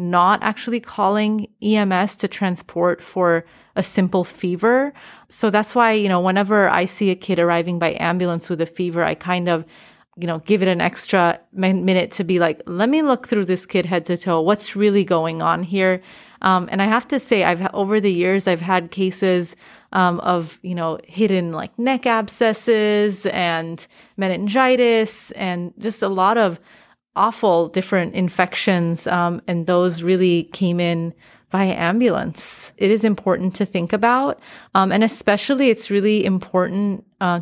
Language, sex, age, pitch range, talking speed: English, female, 30-49, 175-215 Hz, 170 wpm